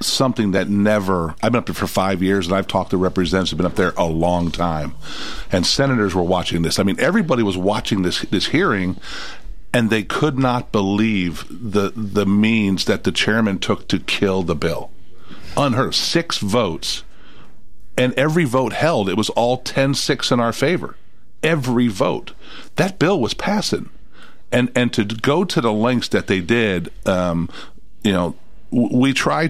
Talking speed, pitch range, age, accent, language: 175 wpm, 95-120 Hz, 50-69, American, English